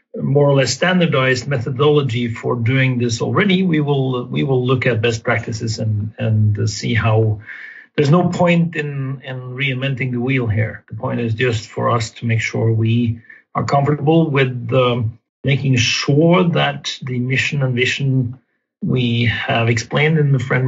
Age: 40-59